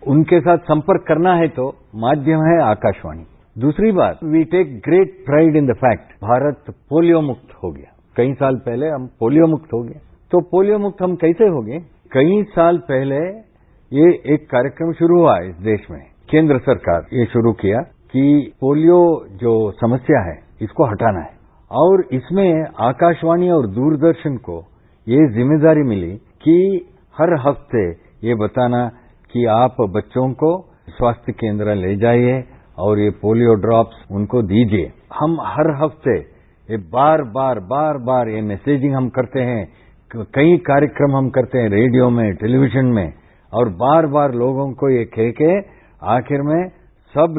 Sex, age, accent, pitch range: male, 50-69, Indian, 115-155 Hz